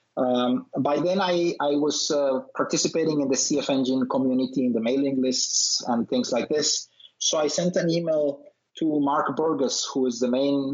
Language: English